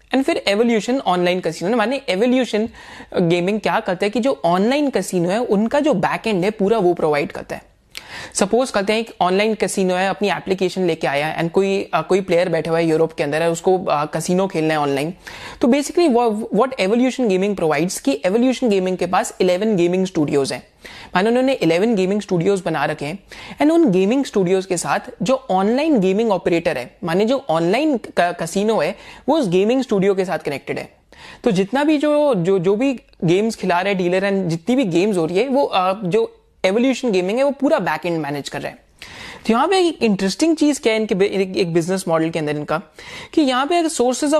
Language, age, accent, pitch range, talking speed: Hindi, 30-49, native, 175-240 Hz, 95 wpm